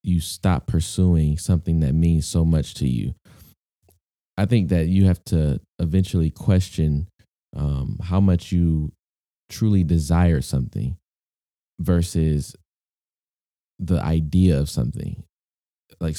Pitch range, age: 80-95 Hz, 20-39